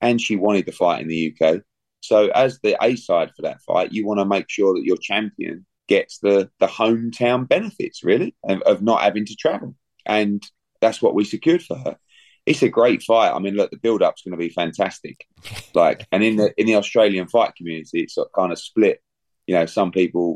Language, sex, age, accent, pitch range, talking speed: English, male, 30-49, British, 90-110 Hz, 215 wpm